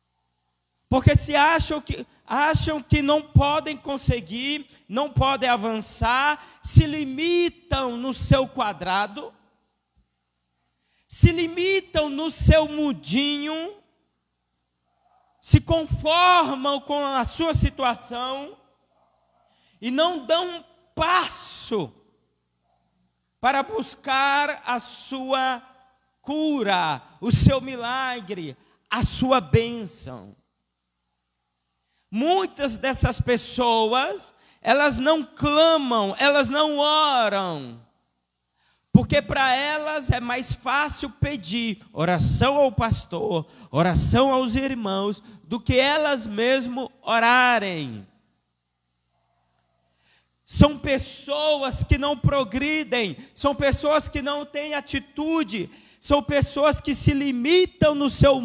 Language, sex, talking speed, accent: Portuguese, male, 90 wpm, Brazilian